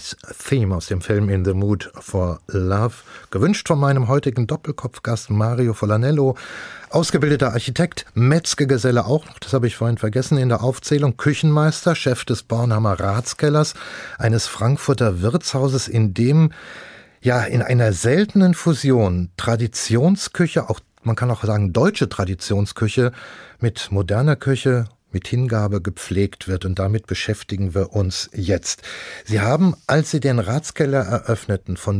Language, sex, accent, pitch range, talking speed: German, male, German, 105-135 Hz, 135 wpm